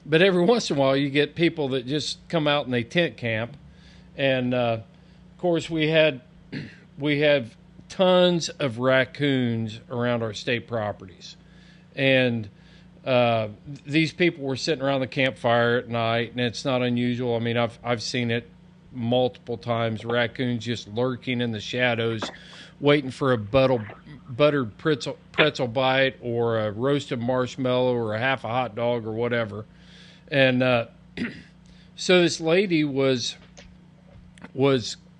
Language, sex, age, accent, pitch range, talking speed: English, male, 40-59, American, 125-165 Hz, 145 wpm